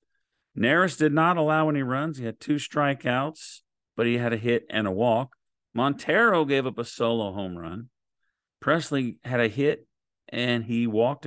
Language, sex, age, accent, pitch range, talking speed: English, male, 40-59, American, 110-150 Hz, 170 wpm